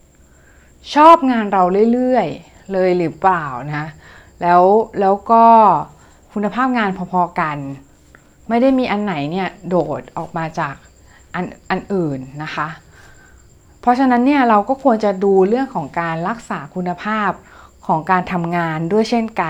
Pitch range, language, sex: 165-220 Hz, Thai, female